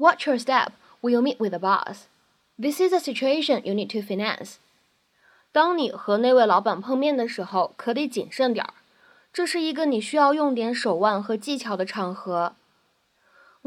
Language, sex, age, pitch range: Chinese, female, 10-29, 205-280 Hz